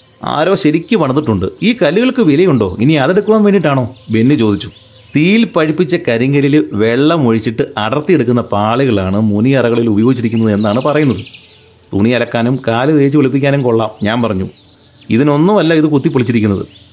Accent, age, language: native, 30-49, Malayalam